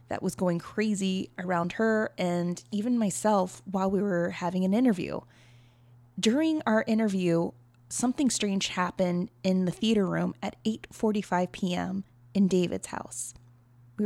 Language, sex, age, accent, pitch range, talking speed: English, female, 20-39, American, 125-205 Hz, 135 wpm